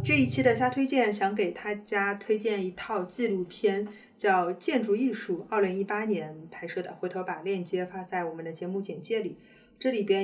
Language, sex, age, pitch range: Chinese, female, 20-39, 185-230 Hz